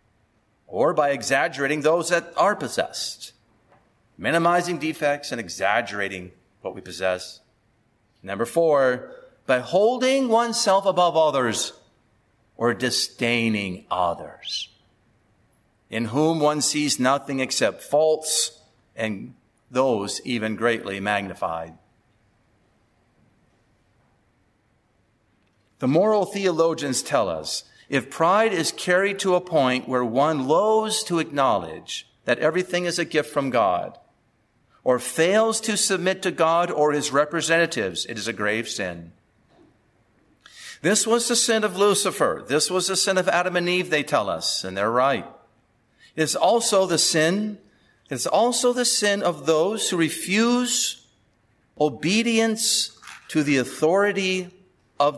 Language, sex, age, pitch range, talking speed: English, male, 50-69, 115-185 Hz, 125 wpm